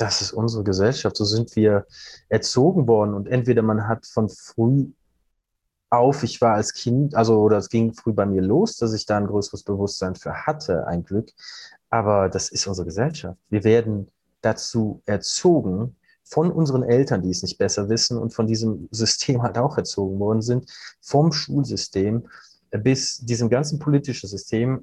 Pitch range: 105-130 Hz